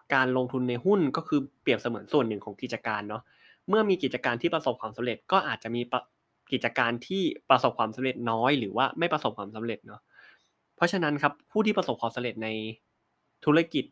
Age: 20-39